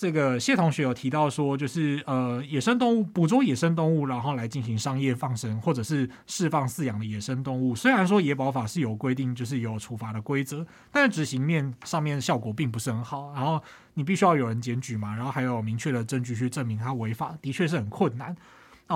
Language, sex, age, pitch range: Chinese, male, 20-39, 125-160 Hz